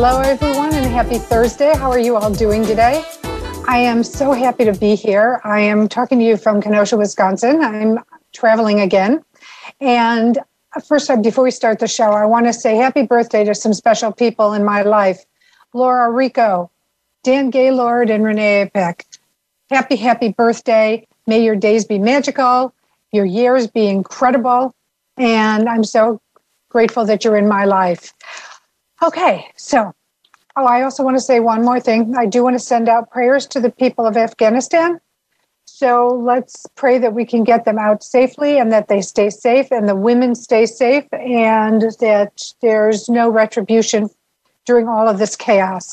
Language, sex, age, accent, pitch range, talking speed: English, female, 50-69, American, 215-255 Hz, 170 wpm